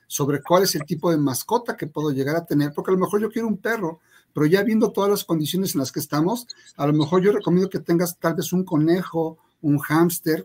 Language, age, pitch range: Spanish, 50-69, 150-190 Hz